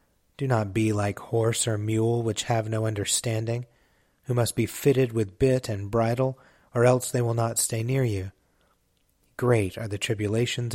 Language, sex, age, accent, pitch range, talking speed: English, male, 30-49, American, 100-120 Hz, 175 wpm